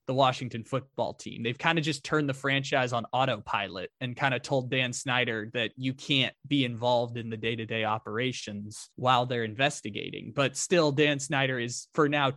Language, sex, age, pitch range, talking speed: English, male, 20-39, 120-145 Hz, 195 wpm